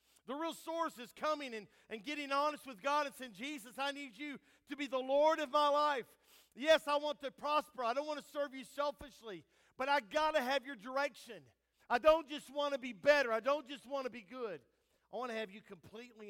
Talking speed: 230 wpm